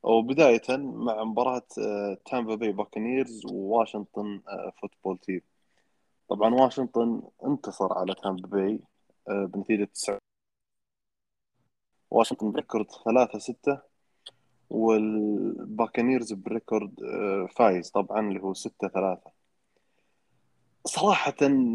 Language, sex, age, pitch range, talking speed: Arabic, male, 20-39, 110-150 Hz, 85 wpm